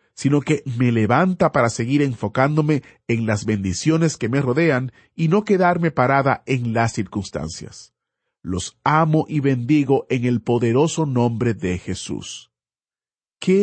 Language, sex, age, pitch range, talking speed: Spanish, male, 40-59, 115-160 Hz, 135 wpm